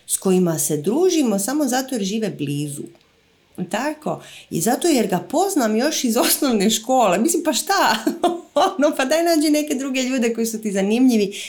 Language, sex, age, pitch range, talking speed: Croatian, female, 30-49, 180-260 Hz, 170 wpm